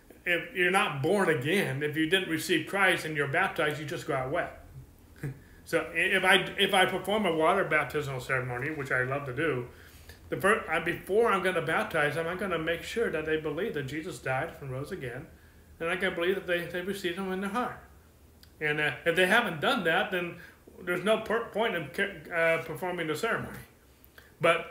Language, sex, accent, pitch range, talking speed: English, male, American, 165-225 Hz, 210 wpm